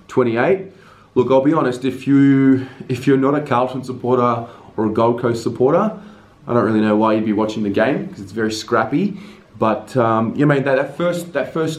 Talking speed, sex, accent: 210 wpm, male, Australian